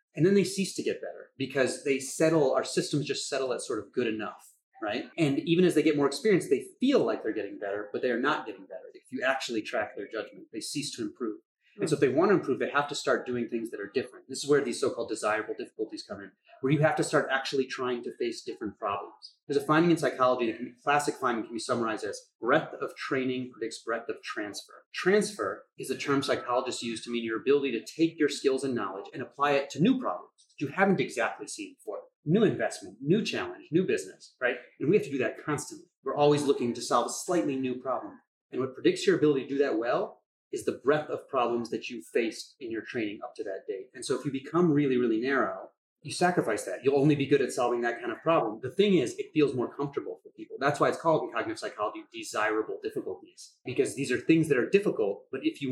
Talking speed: 245 wpm